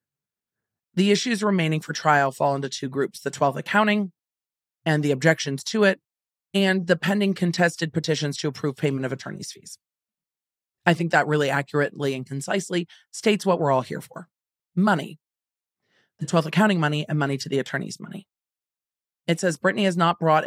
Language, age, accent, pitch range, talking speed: English, 40-59, American, 140-180 Hz, 170 wpm